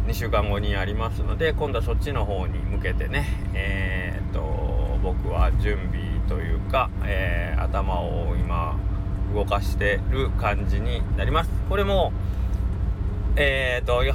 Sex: male